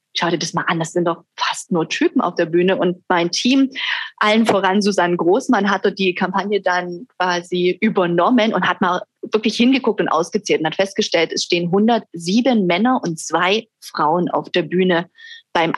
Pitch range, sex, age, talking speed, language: 180-220 Hz, female, 30-49, 185 wpm, German